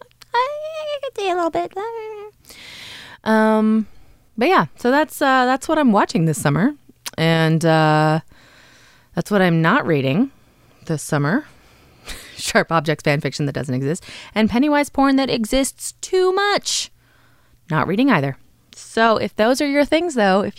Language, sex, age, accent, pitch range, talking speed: English, female, 20-39, American, 170-275 Hz, 150 wpm